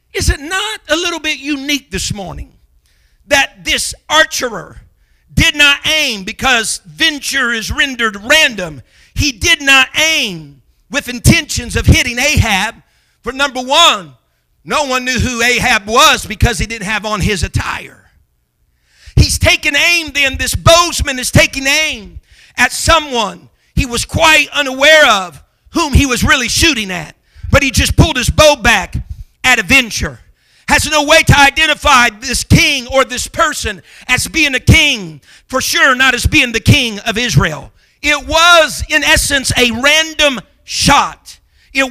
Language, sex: English, male